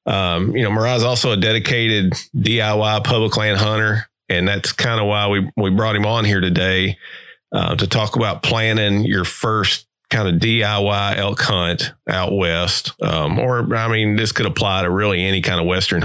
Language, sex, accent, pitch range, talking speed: English, male, American, 95-120 Hz, 190 wpm